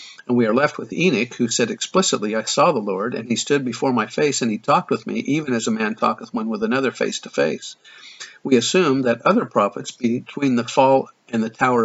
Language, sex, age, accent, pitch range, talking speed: English, male, 50-69, American, 115-135 Hz, 235 wpm